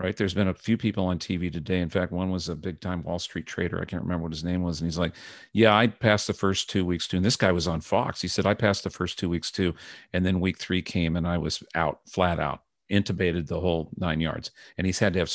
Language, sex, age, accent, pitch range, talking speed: English, male, 50-69, American, 90-115 Hz, 280 wpm